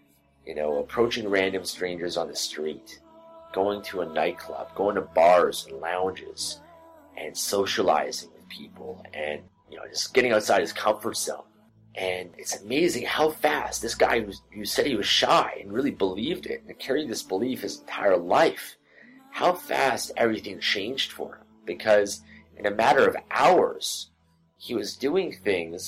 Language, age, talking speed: English, 30-49, 160 wpm